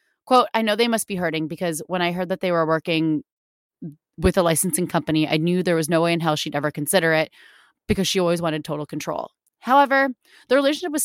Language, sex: English, female